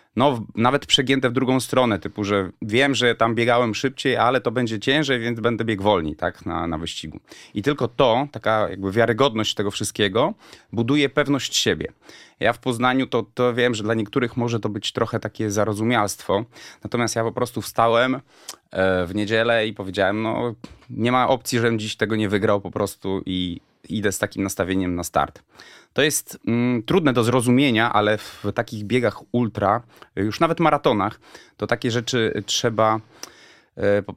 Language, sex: Polish, male